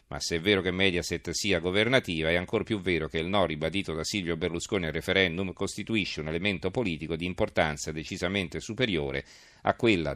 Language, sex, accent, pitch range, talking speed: Italian, male, native, 85-105 Hz, 185 wpm